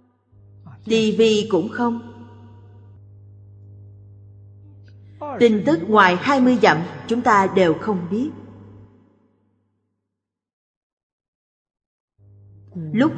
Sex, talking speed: female, 65 wpm